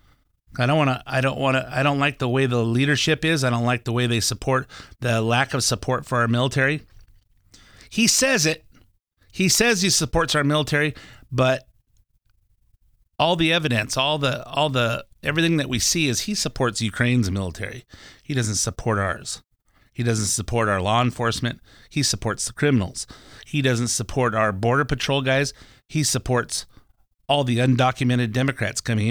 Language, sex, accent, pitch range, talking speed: English, male, American, 115-145 Hz, 175 wpm